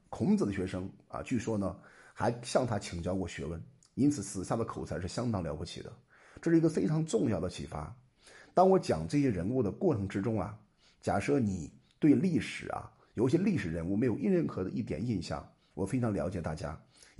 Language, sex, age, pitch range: Chinese, male, 50-69, 95-130 Hz